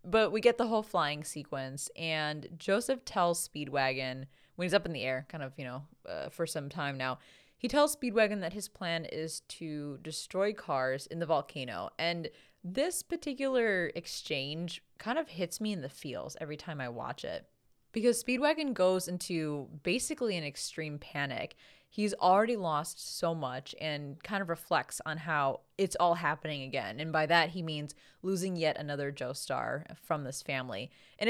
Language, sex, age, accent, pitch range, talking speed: English, female, 20-39, American, 145-190 Hz, 175 wpm